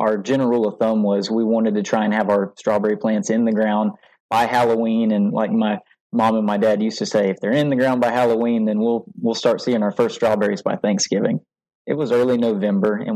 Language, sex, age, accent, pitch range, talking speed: English, male, 20-39, American, 110-130 Hz, 235 wpm